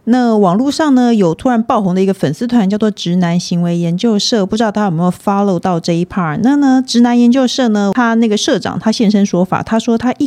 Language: Chinese